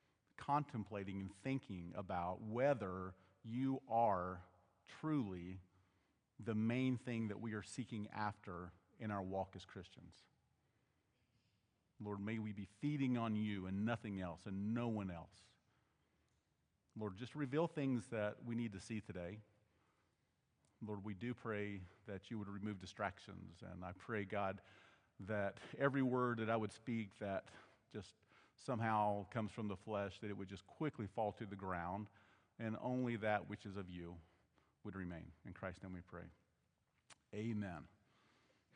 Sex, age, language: male, 50-69, English